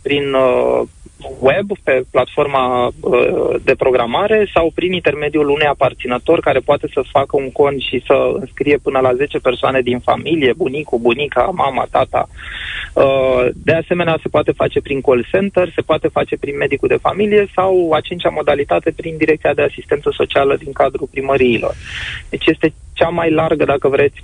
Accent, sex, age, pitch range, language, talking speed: native, male, 20-39, 135-175 Hz, Romanian, 160 wpm